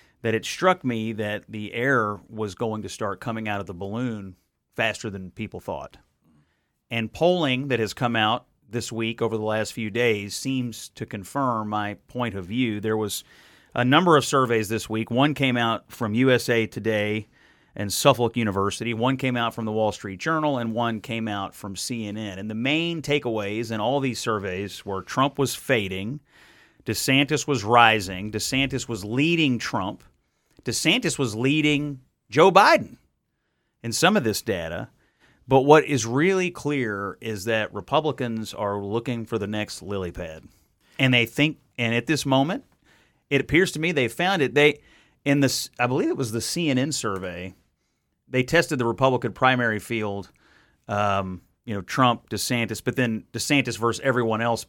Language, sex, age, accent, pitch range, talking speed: English, male, 30-49, American, 105-130 Hz, 170 wpm